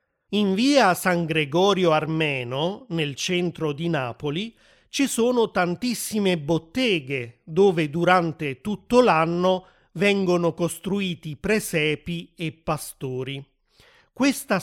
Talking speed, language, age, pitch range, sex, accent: 95 wpm, Italian, 30-49, 155-195 Hz, male, native